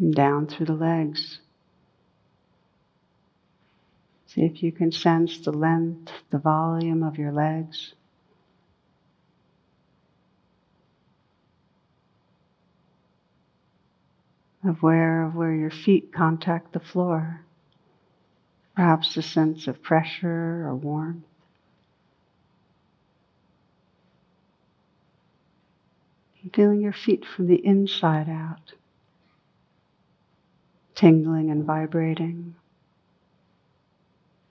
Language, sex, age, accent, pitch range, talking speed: English, female, 60-79, American, 160-175 Hz, 75 wpm